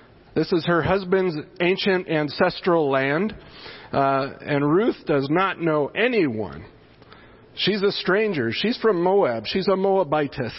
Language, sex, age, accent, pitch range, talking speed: English, male, 40-59, American, 145-185 Hz, 130 wpm